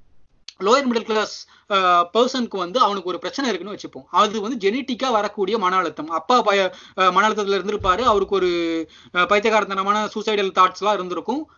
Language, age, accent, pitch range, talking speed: Tamil, 20-39, native, 195-240 Hz, 140 wpm